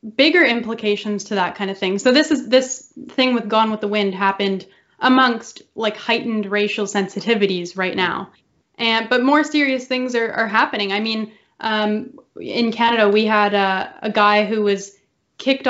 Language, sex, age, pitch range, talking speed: English, female, 10-29, 200-240 Hz, 175 wpm